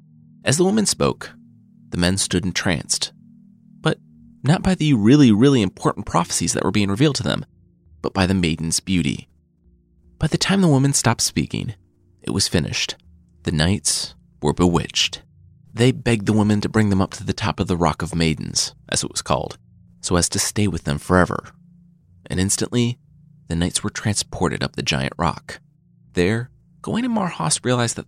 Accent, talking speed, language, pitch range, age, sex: American, 180 wpm, English, 90-150 Hz, 30-49, male